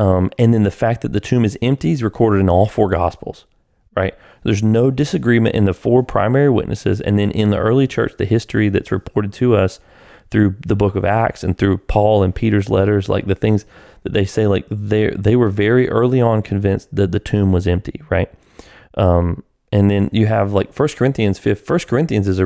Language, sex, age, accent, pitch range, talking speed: English, male, 30-49, American, 100-115 Hz, 215 wpm